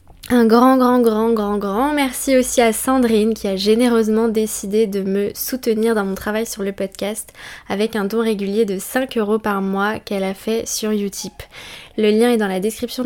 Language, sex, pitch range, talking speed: French, female, 205-235 Hz, 200 wpm